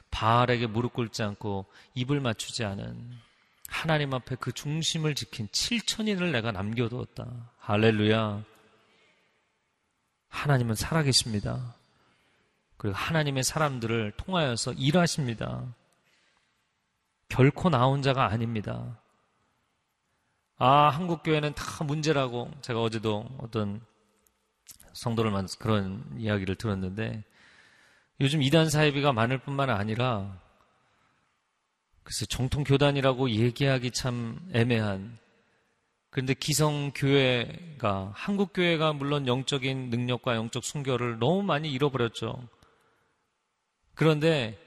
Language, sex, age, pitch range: Korean, male, 40-59, 110-145 Hz